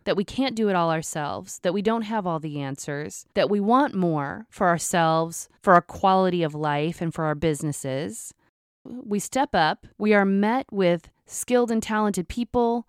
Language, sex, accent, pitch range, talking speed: English, female, American, 160-215 Hz, 185 wpm